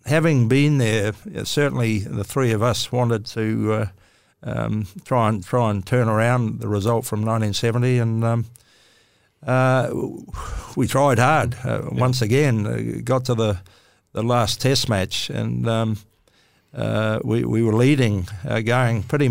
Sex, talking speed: male, 150 wpm